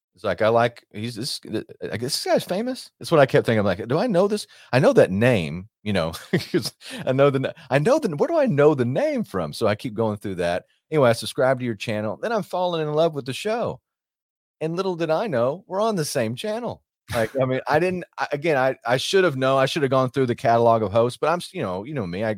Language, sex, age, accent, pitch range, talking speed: English, male, 30-49, American, 95-135 Hz, 270 wpm